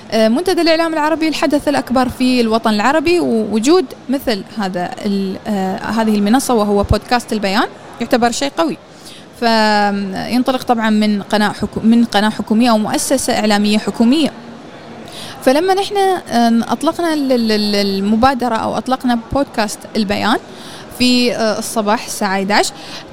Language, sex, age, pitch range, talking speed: Arabic, female, 20-39, 220-280 Hz, 110 wpm